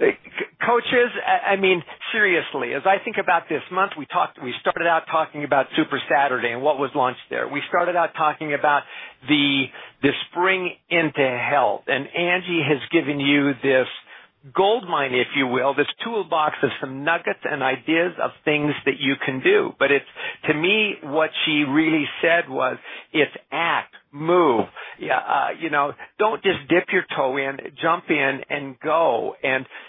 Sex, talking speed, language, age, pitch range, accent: male, 170 wpm, English, 50-69, 140-180 Hz, American